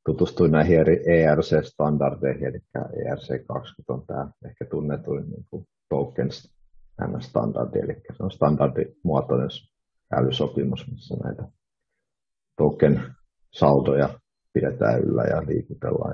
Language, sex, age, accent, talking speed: Finnish, male, 50-69, native, 100 wpm